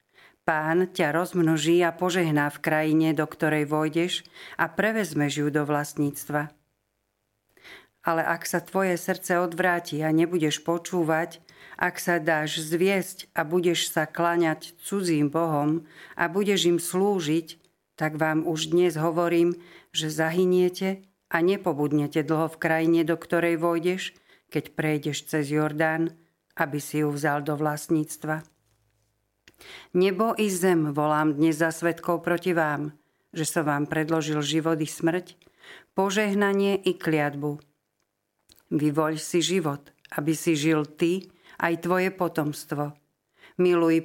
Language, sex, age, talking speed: Slovak, female, 50-69, 125 wpm